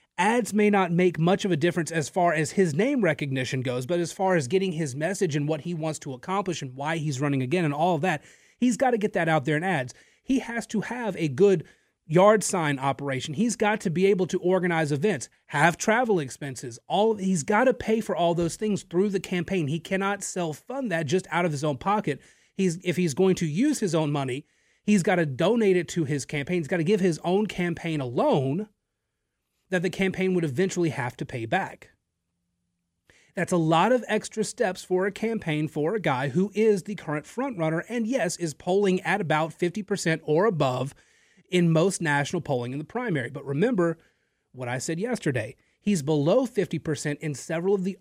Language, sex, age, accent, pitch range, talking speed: English, male, 30-49, American, 150-200 Hz, 210 wpm